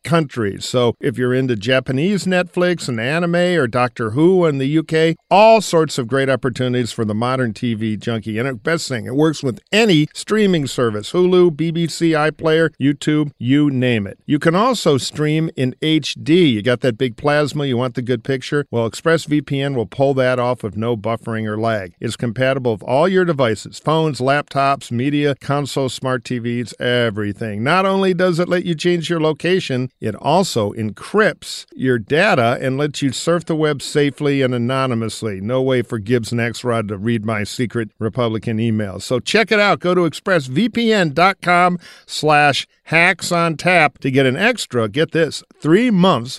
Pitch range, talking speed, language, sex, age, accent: 125-170 Hz, 170 wpm, English, male, 50-69, American